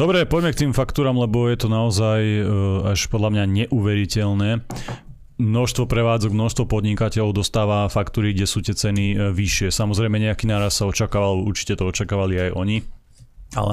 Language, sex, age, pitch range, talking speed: Slovak, male, 30-49, 100-110 Hz, 155 wpm